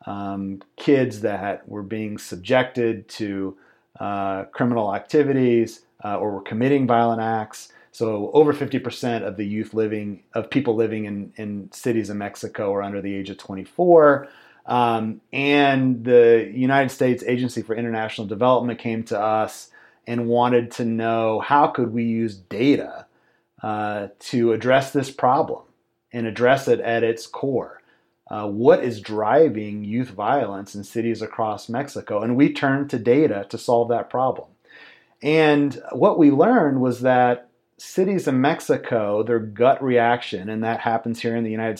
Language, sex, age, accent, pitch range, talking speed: English, male, 30-49, American, 105-125 Hz, 155 wpm